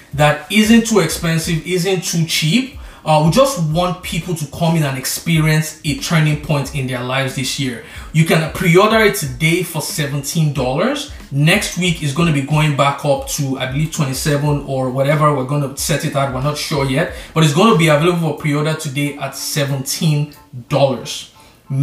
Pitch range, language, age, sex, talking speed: 140-170 Hz, English, 20-39, male, 180 wpm